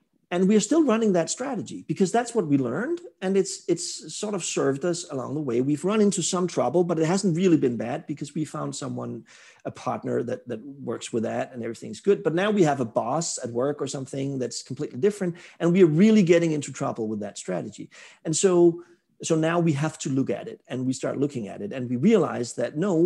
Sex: male